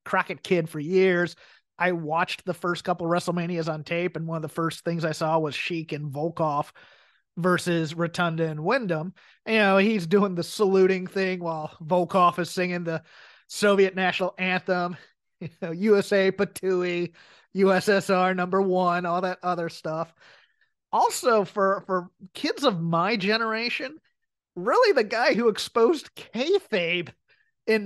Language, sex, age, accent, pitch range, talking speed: English, male, 30-49, American, 175-220 Hz, 145 wpm